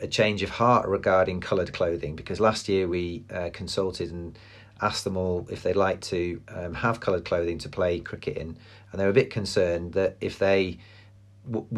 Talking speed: 200 wpm